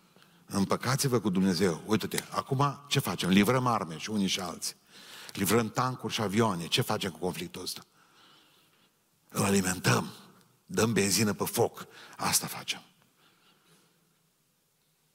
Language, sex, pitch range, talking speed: Romanian, male, 110-160 Hz, 120 wpm